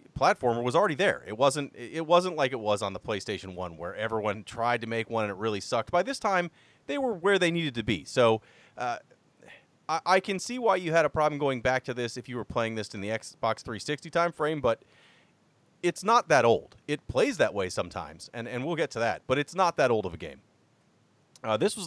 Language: English